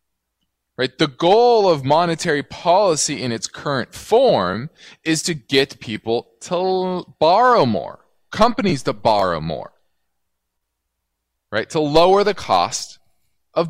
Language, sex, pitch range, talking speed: English, male, 110-180 Hz, 120 wpm